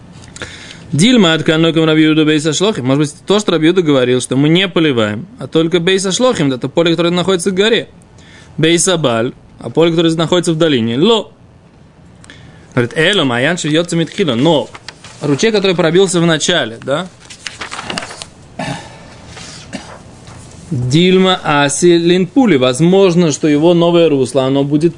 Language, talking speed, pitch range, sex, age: Russian, 125 wpm, 140-180 Hz, male, 20-39